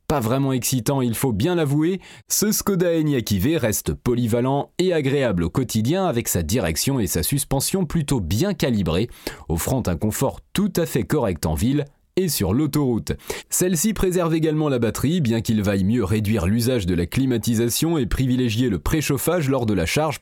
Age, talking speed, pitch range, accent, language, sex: 30-49, 180 wpm, 110-160 Hz, French, French, male